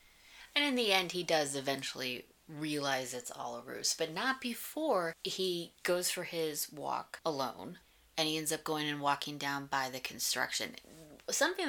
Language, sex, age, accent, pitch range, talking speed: English, female, 20-39, American, 140-170 Hz, 170 wpm